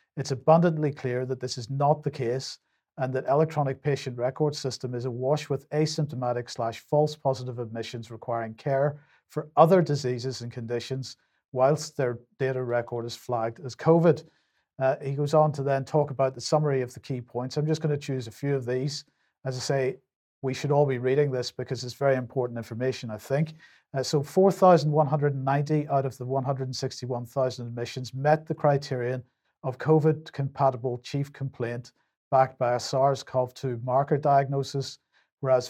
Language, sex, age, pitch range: English, male, 50-69, 125-145 Hz